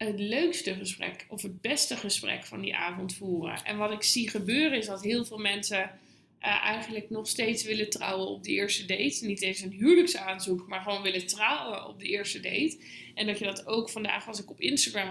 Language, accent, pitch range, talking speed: Dutch, Dutch, 195-235 Hz, 210 wpm